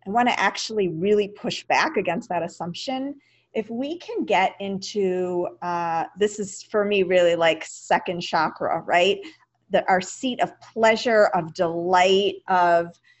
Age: 40-59